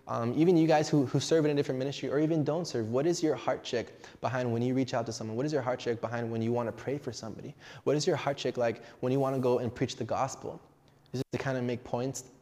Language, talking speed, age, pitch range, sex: English, 300 wpm, 20-39, 110-135 Hz, male